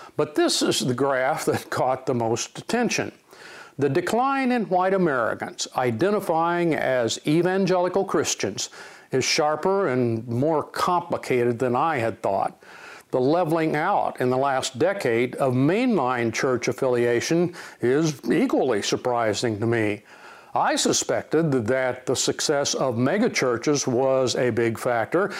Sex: male